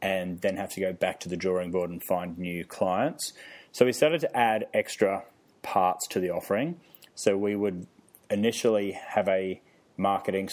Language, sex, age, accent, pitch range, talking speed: English, male, 30-49, Australian, 95-110 Hz, 175 wpm